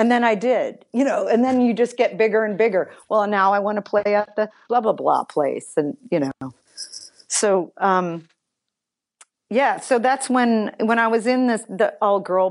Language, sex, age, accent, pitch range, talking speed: English, female, 40-59, American, 170-210 Hz, 200 wpm